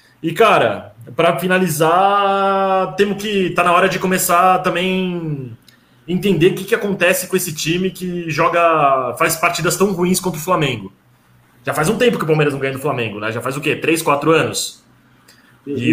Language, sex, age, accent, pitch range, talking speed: Portuguese, male, 20-39, Brazilian, 145-190 Hz, 190 wpm